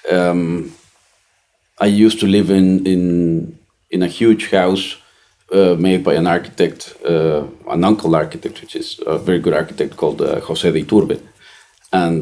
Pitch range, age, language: 80-100 Hz, 40-59, English